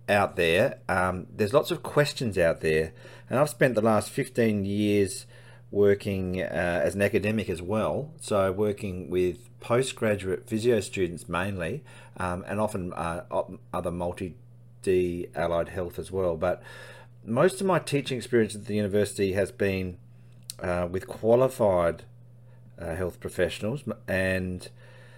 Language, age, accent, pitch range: English, 40-59, Australian, 95-120 Hz